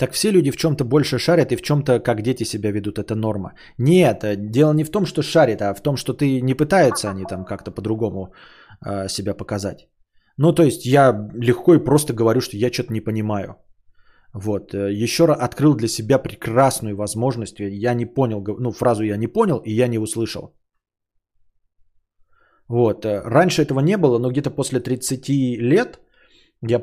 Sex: male